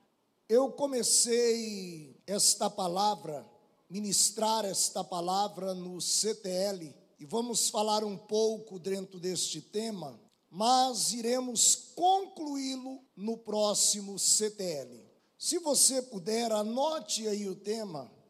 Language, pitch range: Portuguese, 215-280 Hz